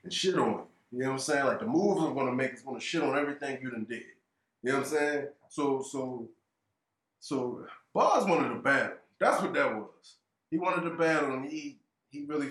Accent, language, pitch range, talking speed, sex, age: American, English, 130-185 Hz, 235 wpm, male, 20-39